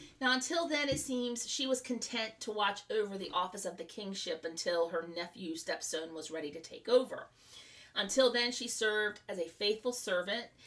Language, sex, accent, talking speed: English, female, American, 185 wpm